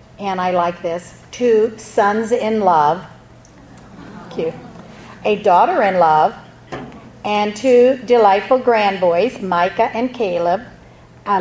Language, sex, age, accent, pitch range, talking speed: English, female, 50-69, American, 185-235 Hz, 110 wpm